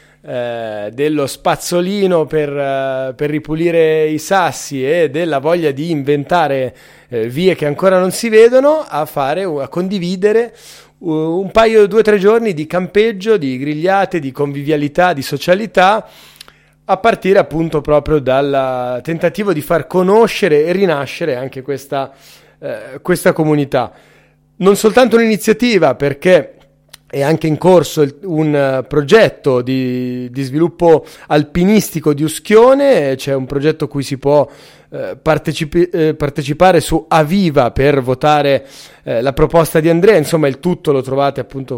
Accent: native